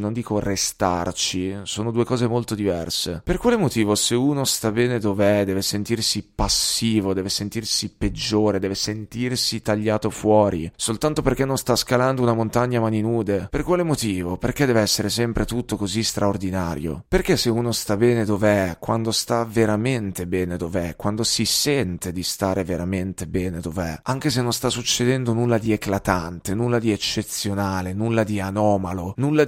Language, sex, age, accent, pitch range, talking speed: Italian, male, 30-49, native, 95-120 Hz, 165 wpm